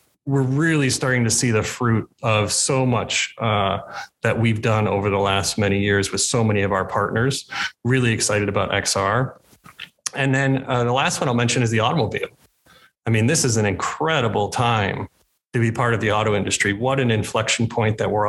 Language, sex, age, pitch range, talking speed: English, male, 30-49, 105-130 Hz, 195 wpm